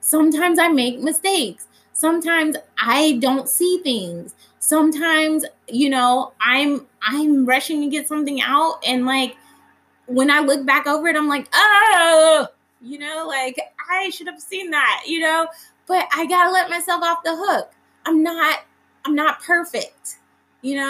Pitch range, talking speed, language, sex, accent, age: 255-330 Hz, 160 wpm, English, female, American, 20-39